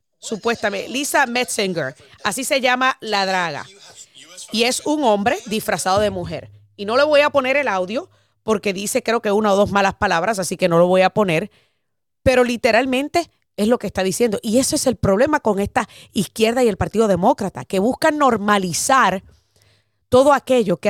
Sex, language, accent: female, Spanish, American